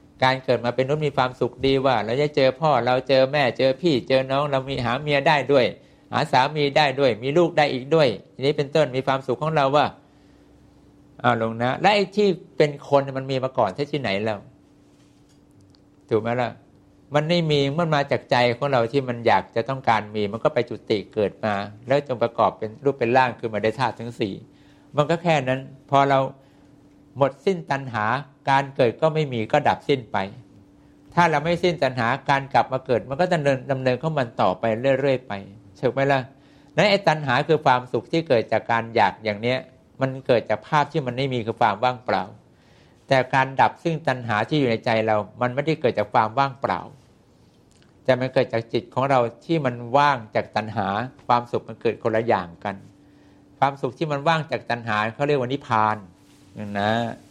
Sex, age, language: male, 60-79, English